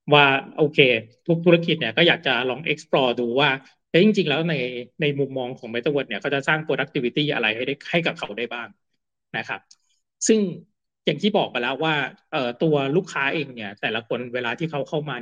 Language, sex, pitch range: Thai, male, 130-175 Hz